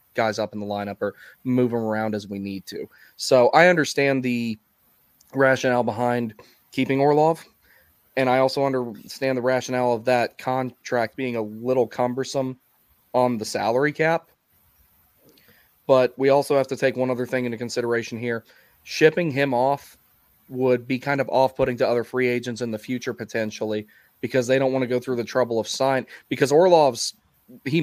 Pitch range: 115-130 Hz